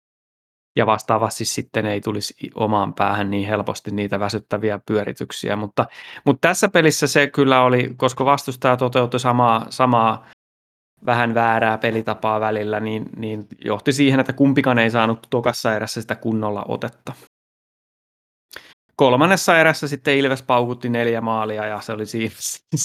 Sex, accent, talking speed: male, native, 135 wpm